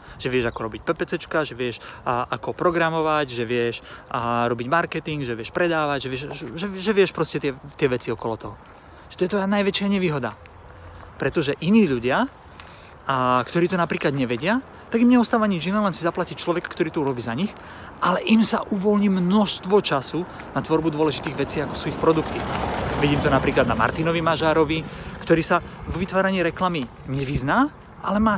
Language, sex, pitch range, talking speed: Slovak, male, 135-190 Hz, 180 wpm